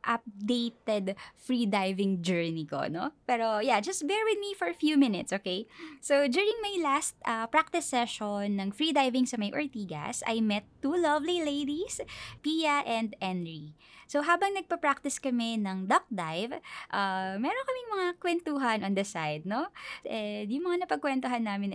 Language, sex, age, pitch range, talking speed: Filipino, female, 20-39, 210-315 Hz, 165 wpm